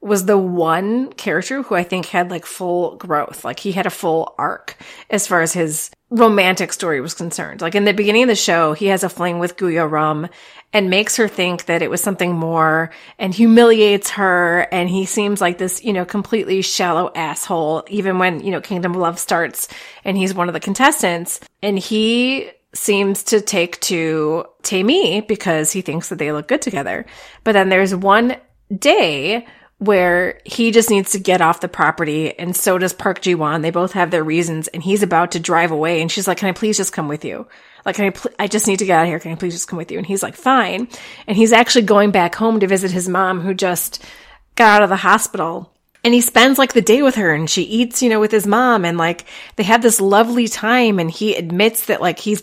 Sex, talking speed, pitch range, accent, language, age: female, 230 wpm, 175-215 Hz, American, English, 30-49